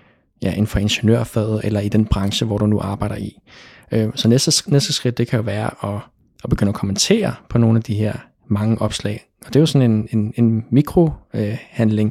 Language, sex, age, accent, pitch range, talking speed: Danish, male, 20-39, native, 105-120 Hz, 215 wpm